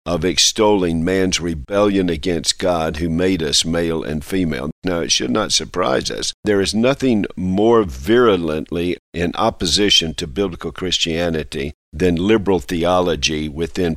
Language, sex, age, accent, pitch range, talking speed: English, male, 50-69, American, 85-105 Hz, 135 wpm